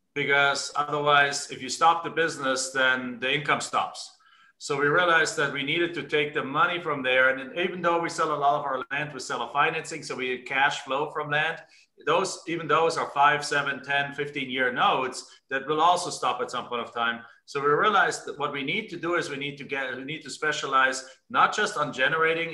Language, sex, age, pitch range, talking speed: English, male, 40-59, 130-160 Hz, 230 wpm